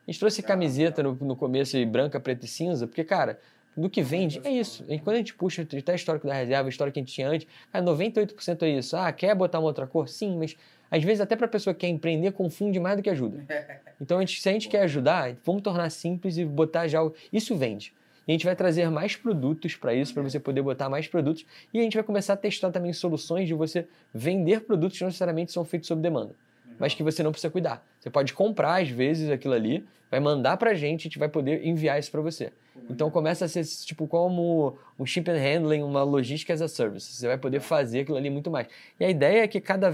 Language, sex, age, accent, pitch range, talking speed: Portuguese, male, 20-39, Brazilian, 145-180 Hz, 245 wpm